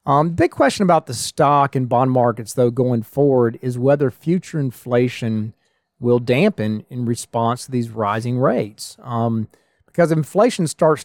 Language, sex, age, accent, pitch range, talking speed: English, male, 40-59, American, 120-145 Hz, 155 wpm